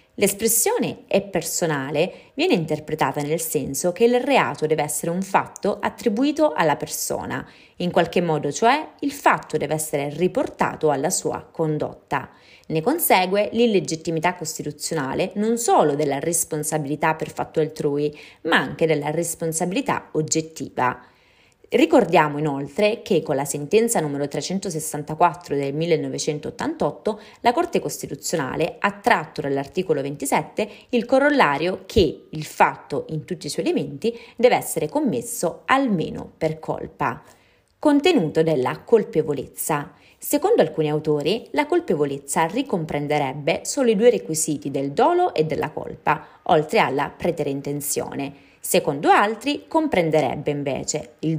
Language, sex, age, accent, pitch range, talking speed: Italian, female, 30-49, native, 150-215 Hz, 125 wpm